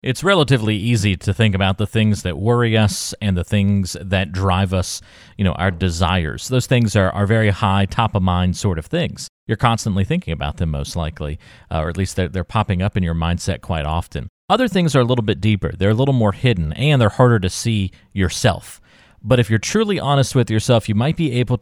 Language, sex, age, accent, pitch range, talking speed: English, male, 40-59, American, 95-115 Hz, 230 wpm